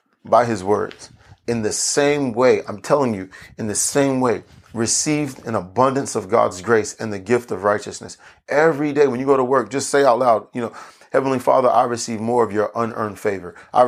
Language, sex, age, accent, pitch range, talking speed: English, male, 30-49, American, 110-130 Hz, 210 wpm